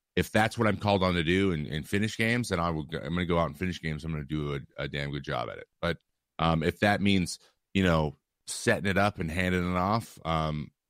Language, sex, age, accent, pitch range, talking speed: English, male, 30-49, American, 75-95 Hz, 270 wpm